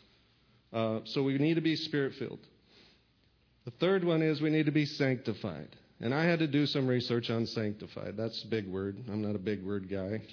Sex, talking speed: male, 205 wpm